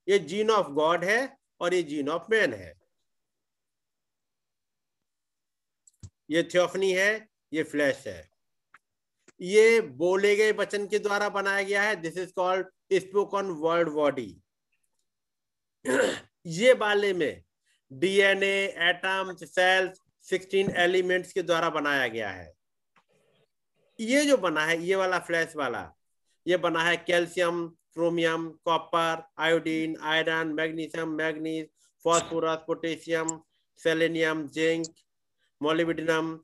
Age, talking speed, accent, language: 50-69, 110 wpm, native, Hindi